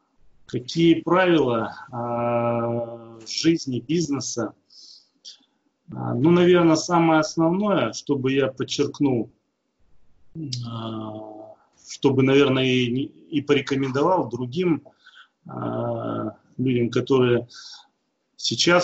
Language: Russian